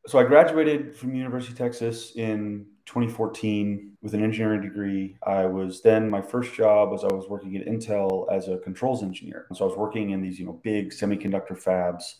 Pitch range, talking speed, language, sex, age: 90-105 Hz, 200 wpm, English, male, 30-49